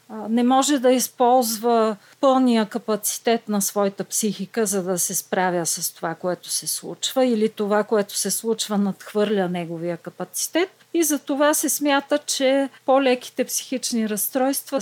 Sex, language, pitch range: female, Bulgarian, 200-260 Hz